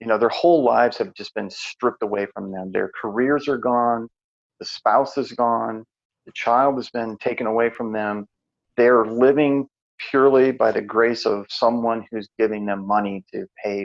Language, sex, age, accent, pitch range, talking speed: English, male, 40-59, American, 100-120 Hz, 180 wpm